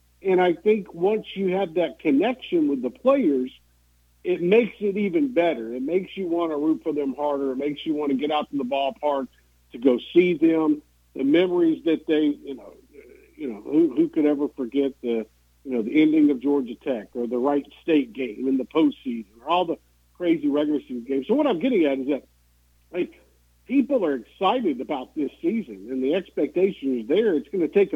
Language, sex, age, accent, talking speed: English, male, 50-69, American, 210 wpm